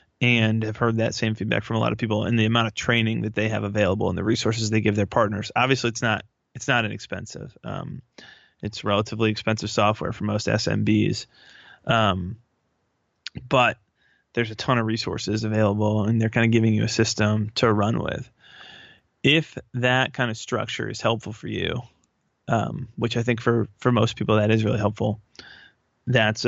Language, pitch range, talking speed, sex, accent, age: English, 110-120 Hz, 185 wpm, male, American, 20-39